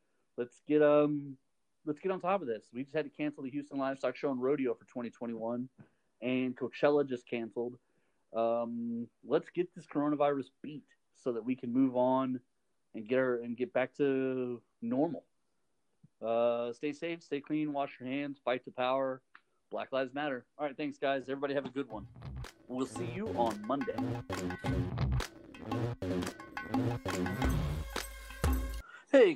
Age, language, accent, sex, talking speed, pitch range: 30-49, English, American, male, 155 wpm, 125-150 Hz